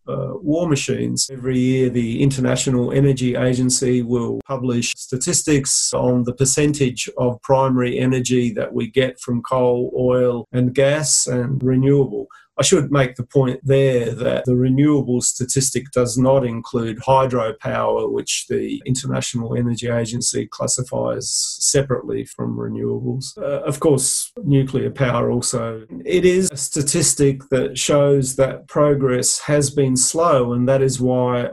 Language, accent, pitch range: English, Australian, 125-140 Hz